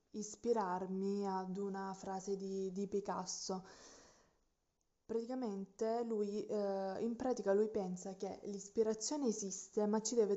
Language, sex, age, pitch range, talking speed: Italian, female, 20-39, 185-210 Hz, 115 wpm